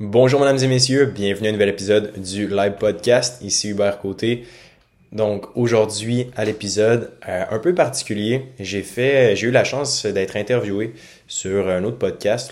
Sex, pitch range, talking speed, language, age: male, 90-110 Hz, 170 wpm, French, 20-39